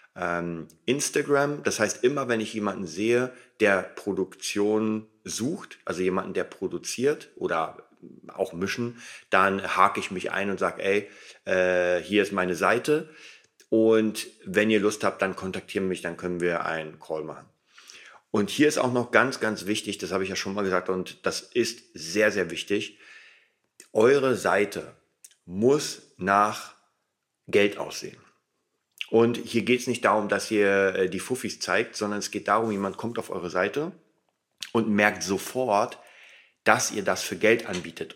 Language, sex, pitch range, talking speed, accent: German, male, 95-110 Hz, 160 wpm, German